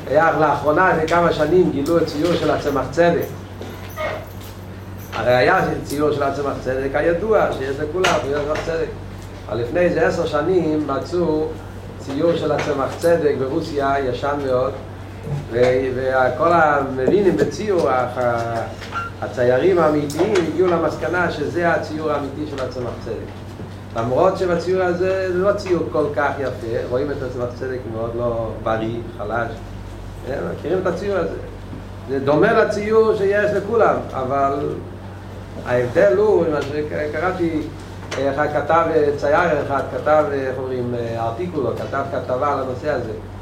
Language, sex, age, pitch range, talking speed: Hebrew, male, 40-59, 110-155 Hz, 130 wpm